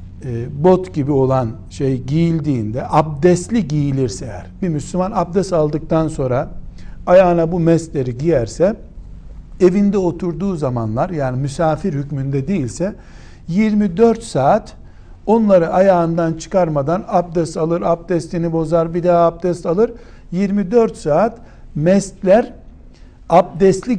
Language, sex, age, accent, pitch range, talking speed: Turkish, male, 60-79, native, 135-190 Hz, 105 wpm